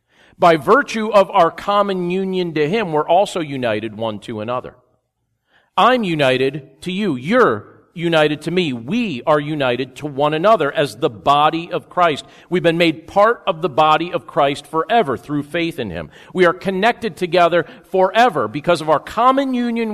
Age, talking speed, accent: 40-59, 170 wpm, American